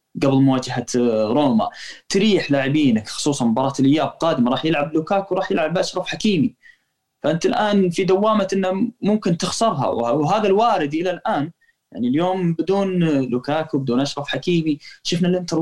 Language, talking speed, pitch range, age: Arabic, 140 wpm, 135-190 Hz, 20-39